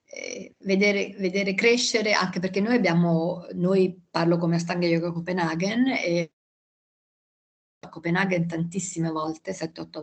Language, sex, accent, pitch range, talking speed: Italian, female, native, 170-195 Hz, 115 wpm